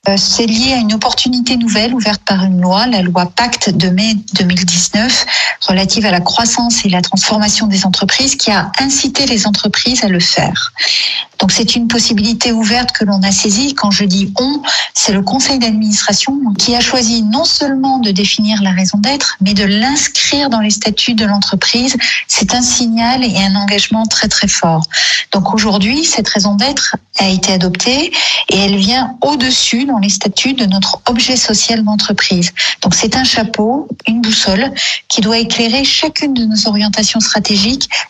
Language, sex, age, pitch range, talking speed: French, female, 40-59, 200-250 Hz, 175 wpm